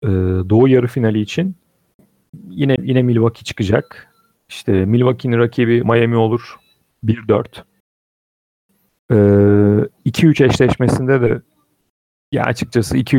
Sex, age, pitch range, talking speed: male, 40-59, 105-125 Hz, 90 wpm